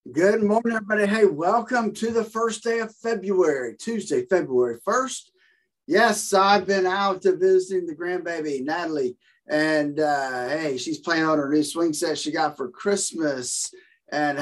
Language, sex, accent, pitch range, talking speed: English, male, American, 150-225 Hz, 160 wpm